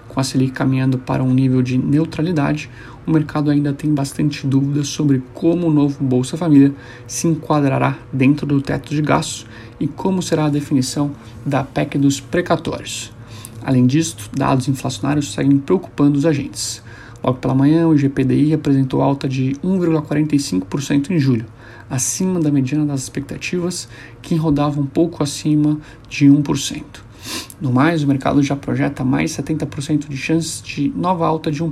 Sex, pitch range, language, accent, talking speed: male, 130-150 Hz, Portuguese, Brazilian, 155 wpm